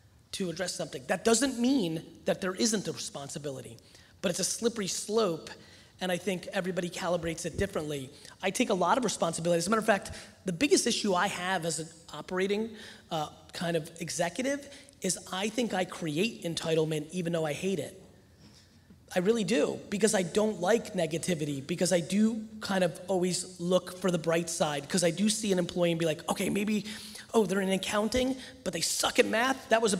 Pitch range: 175-225 Hz